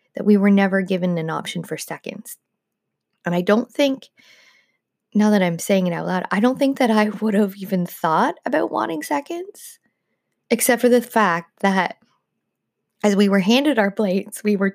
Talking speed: 185 wpm